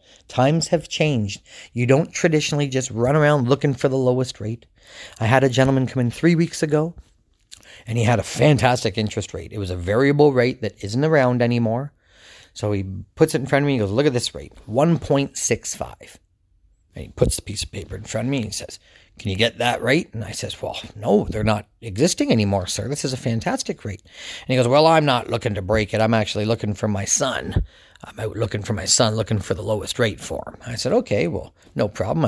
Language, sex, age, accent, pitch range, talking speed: English, male, 40-59, American, 105-145 Hz, 230 wpm